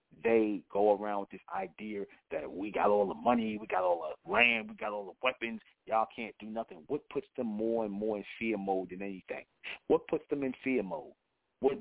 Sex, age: male, 40-59